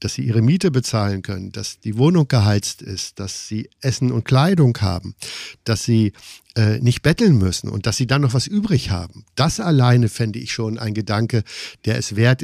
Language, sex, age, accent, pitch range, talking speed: German, male, 50-69, German, 110-140 Hz, 200 wpm